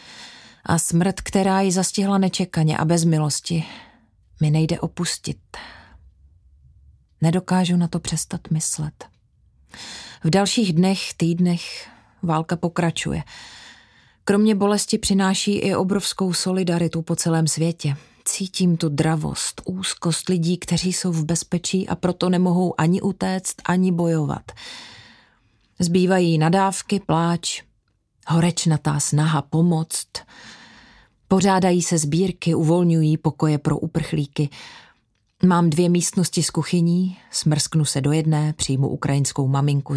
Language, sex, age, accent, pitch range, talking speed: Czech, female, 30-49, native, 150-180 Hz, 110 wpm